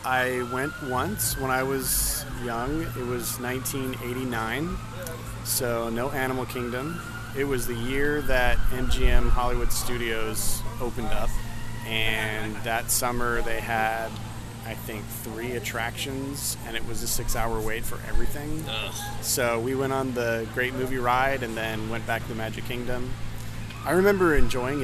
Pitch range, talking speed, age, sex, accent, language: 110-125 Hz, 145 wpm, 30-49, male, American, English